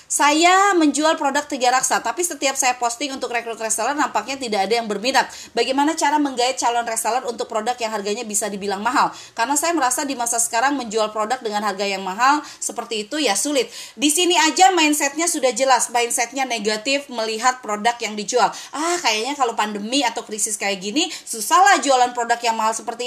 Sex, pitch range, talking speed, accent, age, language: female, 235-305 Hz, 185 wpm, native, 30-49, Indonesian